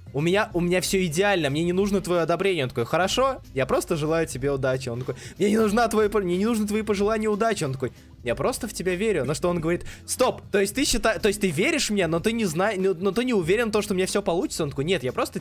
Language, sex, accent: Russian, male, native